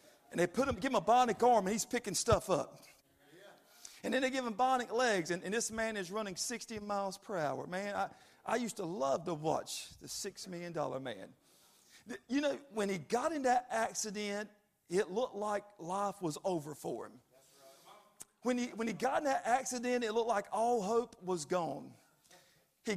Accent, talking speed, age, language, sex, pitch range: American, 190 wpm, 40-59, English, male, 165-235 Hz